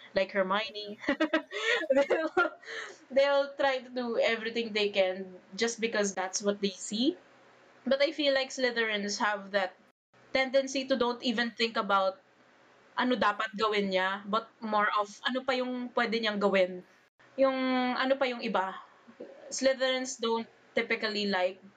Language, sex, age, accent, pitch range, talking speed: English, female, 20-39, Filipino, 195-245 Hz, 130 wpm